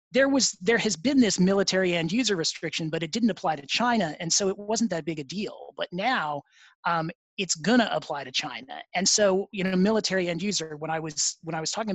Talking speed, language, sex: 230 wpm, English, male